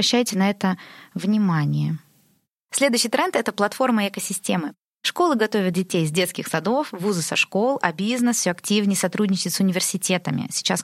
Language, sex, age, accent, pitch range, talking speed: Russian, female, 20-39, native, 180-215 Hz, 150 wpm